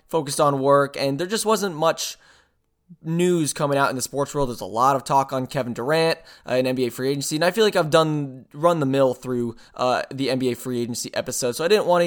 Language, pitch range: English, 125-155 Hz